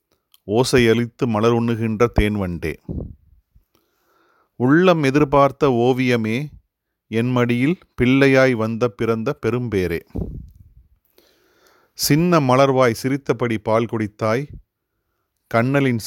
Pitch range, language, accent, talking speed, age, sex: 110-135 Hz, Tamil, native, 70 wpm, 30-49, male